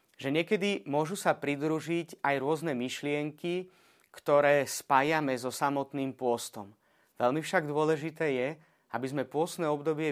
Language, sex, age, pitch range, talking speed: Slovak, male, 30-49, 130-150 Hz, 125 wpm